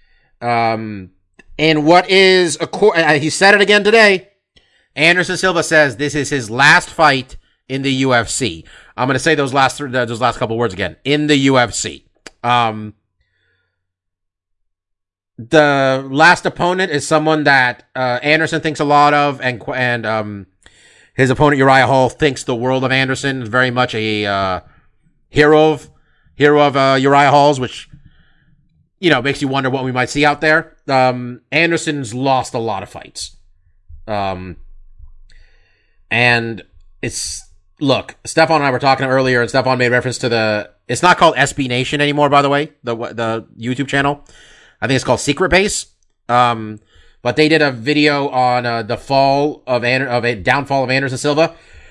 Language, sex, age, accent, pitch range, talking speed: English, male, 30-49, American, 115-150 Hz, 170 wpm